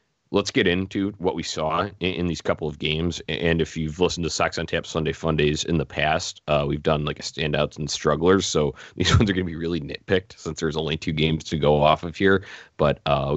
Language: English